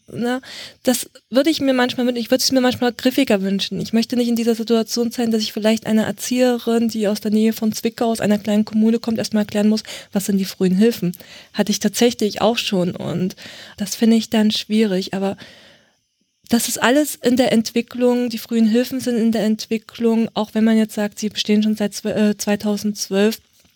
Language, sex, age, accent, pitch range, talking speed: German, female, 20-39, German, 205-230 Hz, 185 wpm